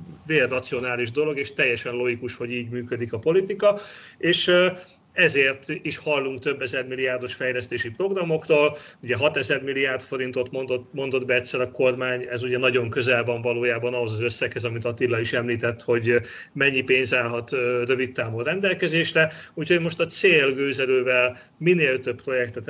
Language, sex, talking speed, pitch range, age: Hungarian, male, 150 wpm, 120-140 Hz, 40-59